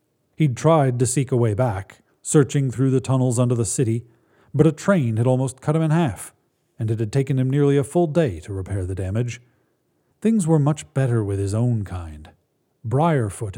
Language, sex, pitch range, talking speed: English, male, 110-145 Hz, 200 wpm